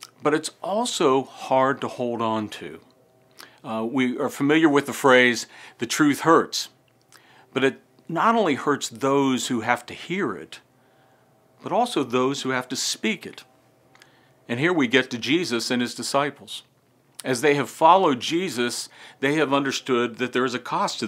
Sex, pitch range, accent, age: male, 120-145 Hz, American, 50-69